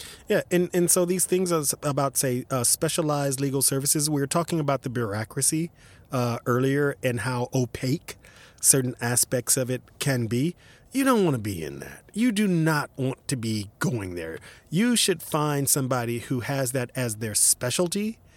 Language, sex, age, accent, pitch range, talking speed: English, male, 30-49, American, 120-150 Hz, 175 wpm